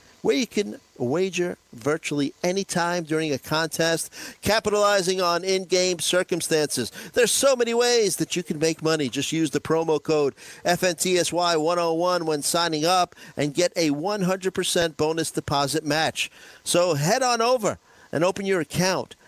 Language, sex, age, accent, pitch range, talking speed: English, male, 50-69, American, 135-170 Hz, 145 wpm